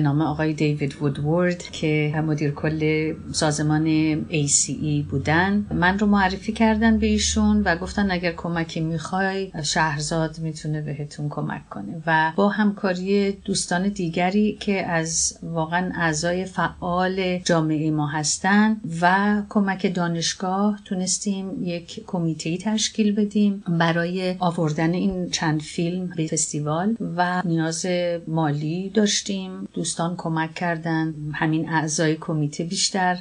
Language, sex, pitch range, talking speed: Persian, female, 155-185 Hz, 115 wpm